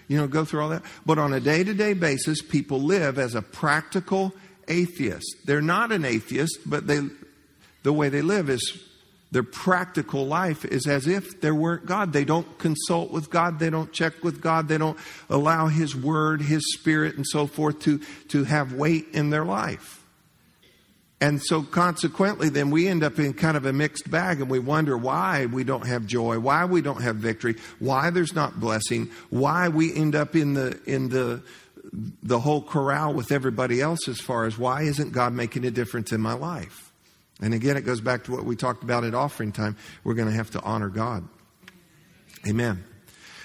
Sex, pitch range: male, 125-160 Hz